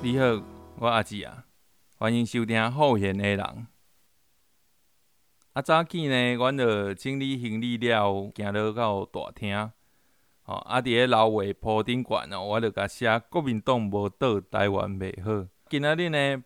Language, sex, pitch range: Chinese, male, 105-125 Hz